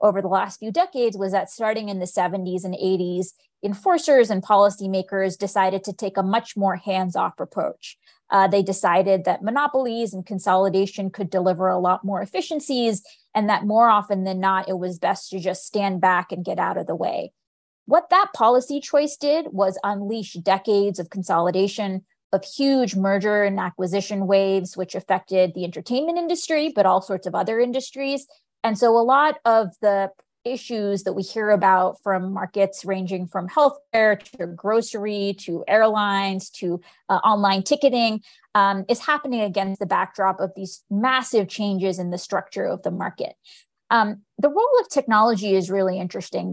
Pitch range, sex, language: 190-225 Hz, female, English